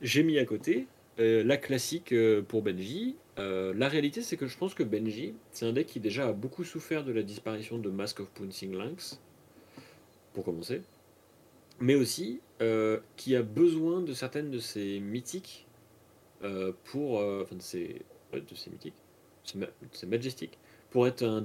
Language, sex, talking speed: French, male, 175 wpm